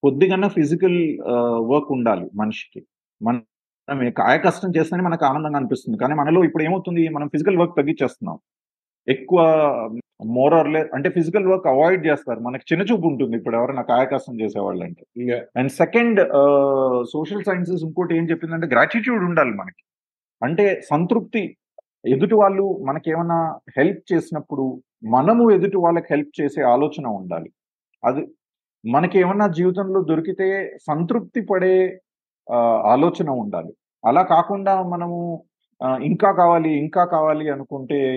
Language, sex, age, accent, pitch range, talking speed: Telugu, male, 30-49, native, 135-185 Hz, 120 wpm